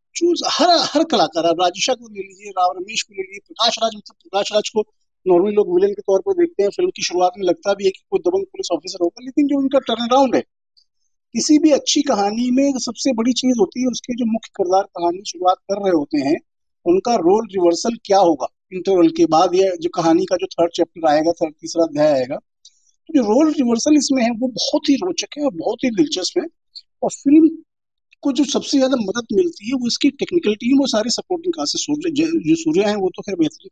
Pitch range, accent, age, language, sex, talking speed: 195-275 Hz, native, 50-69, Hindi, male, 135 wpm